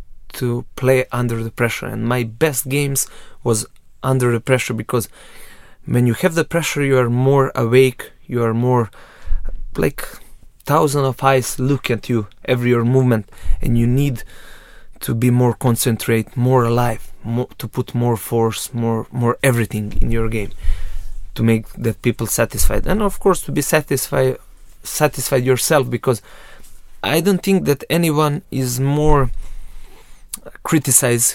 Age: 20-39